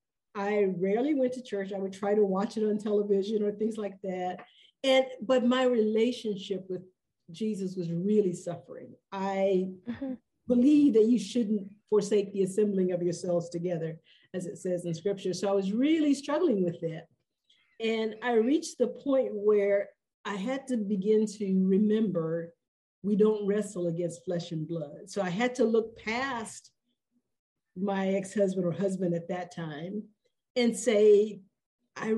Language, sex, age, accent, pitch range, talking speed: English, female, 50-69, American, 190-235 Hz, 155 wpm